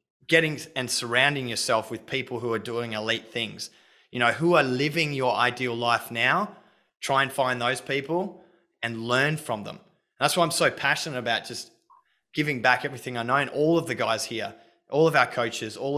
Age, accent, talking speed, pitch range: 20-39, Australian, 195 wpm, 110-130 Hz